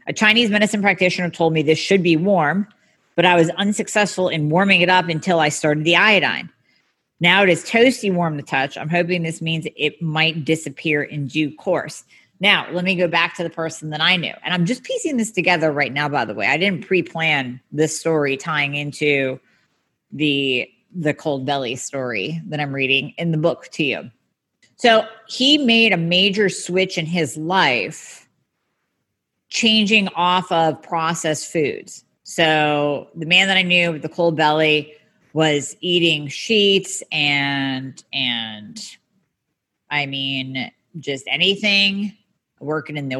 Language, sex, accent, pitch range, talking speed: English, female, American, 155-195 Hz, 165 wpm